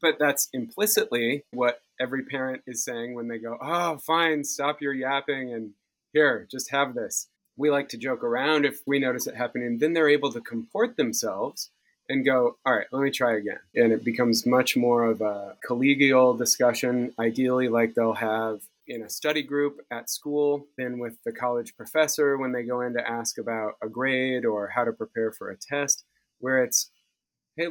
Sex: male